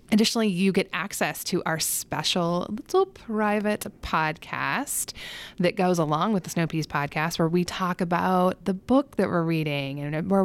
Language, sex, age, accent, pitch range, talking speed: English, female, 20-39, American, 160-215 Hz, 165 wpm